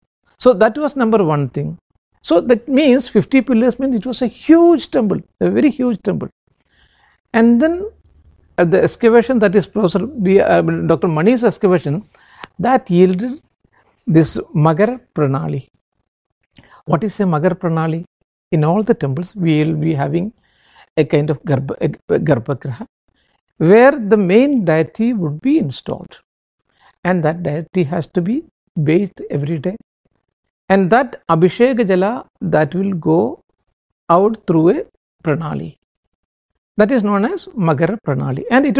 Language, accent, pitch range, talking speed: English, Indian, 165-235 Hz, 140 wpm